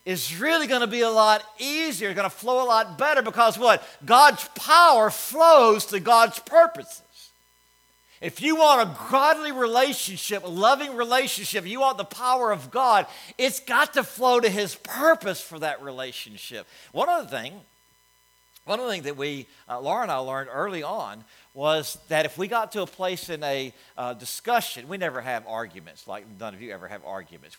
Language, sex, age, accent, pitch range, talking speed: English, male, 50-69, American, 170-245 Hz, 190 wpm